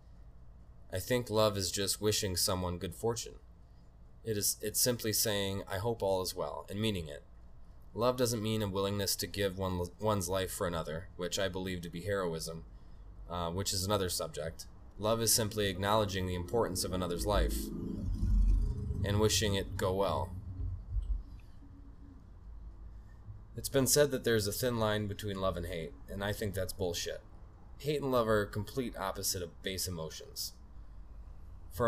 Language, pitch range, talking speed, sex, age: English, 90-105 Hz, 160 wpm, male, 20-39